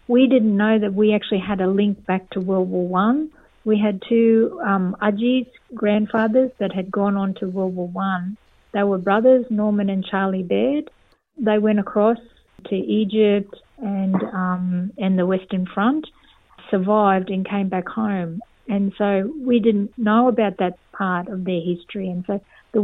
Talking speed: 170 wpm